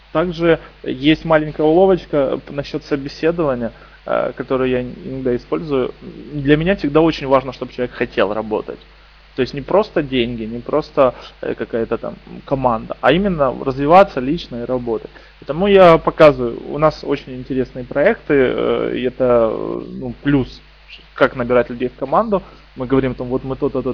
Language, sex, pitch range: Russian, male, 125-155 Hz